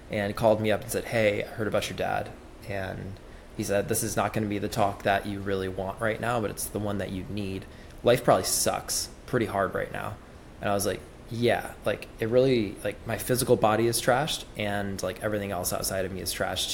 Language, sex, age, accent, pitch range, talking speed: English, male, 20-39, American, 95-110 Hz, 235 wpm